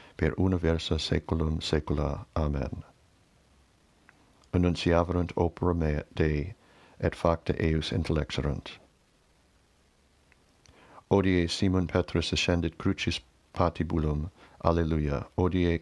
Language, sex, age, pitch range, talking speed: English, male, 60-79, 80-90 Hz, 75 wpm